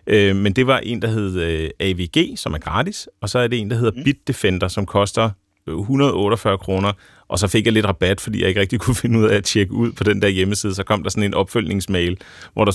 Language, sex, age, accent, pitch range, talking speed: Danish, male, 30-49, native, 100-120 Hz, 240 wpm